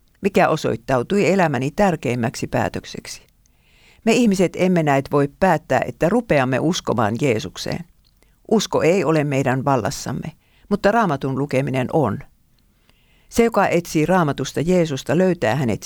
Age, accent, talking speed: 50-69, native, 115 wpm